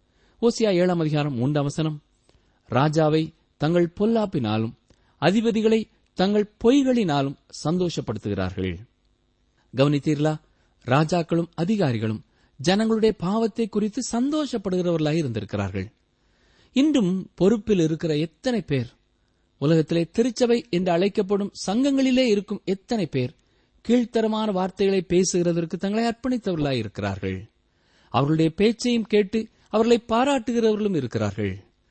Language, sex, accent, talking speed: Tamil, male, native, 85 wpm